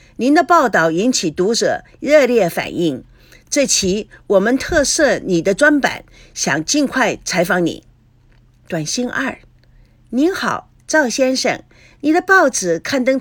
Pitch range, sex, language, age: 190-310 Hz, female, Chinese, 50-69